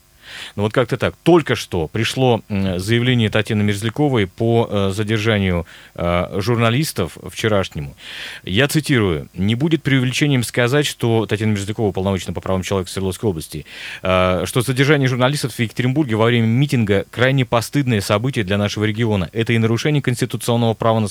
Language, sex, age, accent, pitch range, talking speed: Russian, male, 30-49, native, 100-130 Hz, 140 wpm